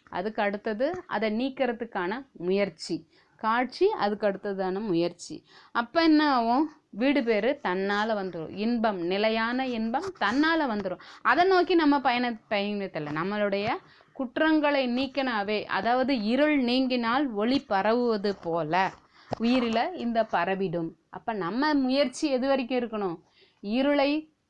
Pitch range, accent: 195-265 Hz, native